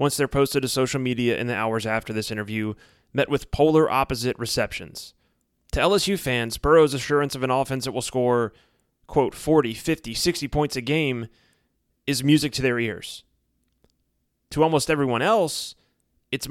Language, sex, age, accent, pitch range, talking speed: English, male, 30-49, American, 110-145 Hz, 165 wpm